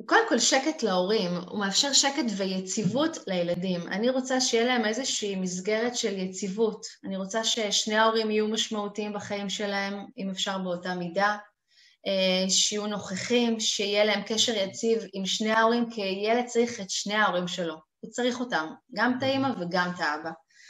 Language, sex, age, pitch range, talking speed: Hebrew, female, 20-39, 195-255 Hz, 155 wpm